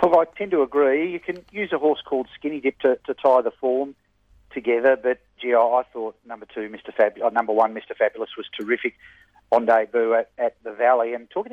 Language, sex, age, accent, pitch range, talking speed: English, male, 40-59, Australian, 115-145 Hz, 215 wpm